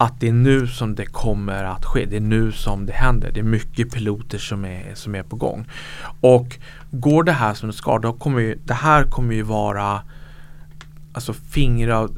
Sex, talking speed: male, 205 wpm